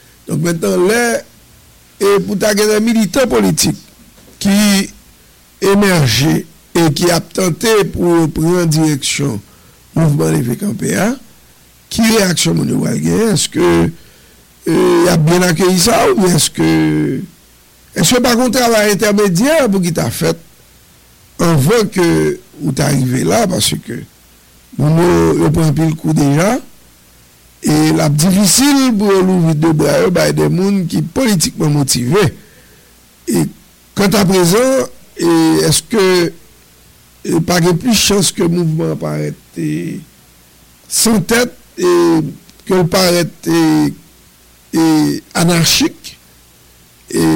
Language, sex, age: English, male, 60-79